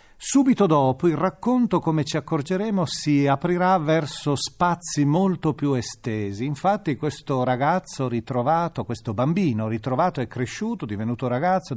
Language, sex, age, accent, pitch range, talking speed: Italian, male, 40-59, native, 120-165 Hz, 135 wpm